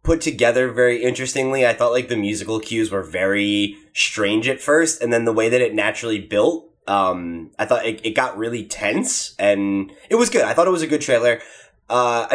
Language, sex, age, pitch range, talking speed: English, male, 20-39, 105-130 Hz, 210 wpm